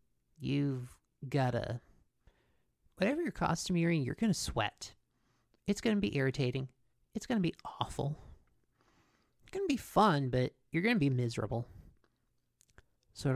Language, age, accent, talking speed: English, 40-59, American, 155 wpm